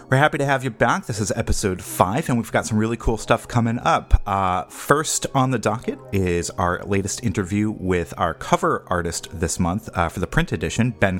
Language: English